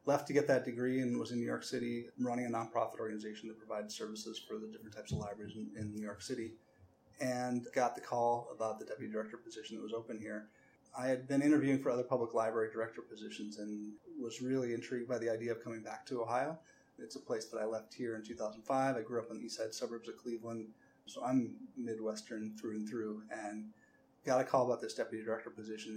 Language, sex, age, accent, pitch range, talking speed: English, male, 30-49, American, 110-120 Hz, 225 wpm